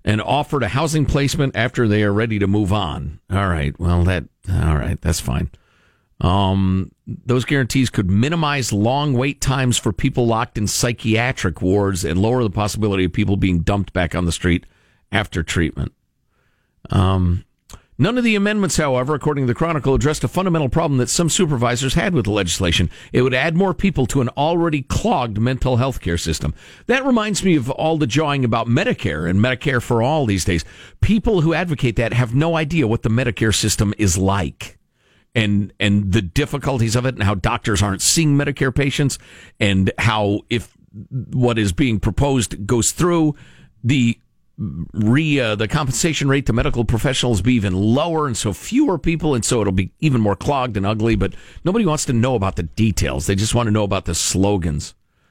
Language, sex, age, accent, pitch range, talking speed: English, male, 50-69, American, 100-140 Hz, 190 wpm